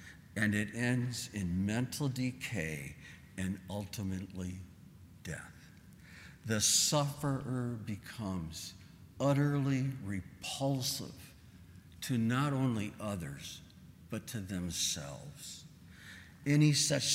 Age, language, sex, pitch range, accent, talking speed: 60-79, English, male, 105-145 Hz, American, 80 wpm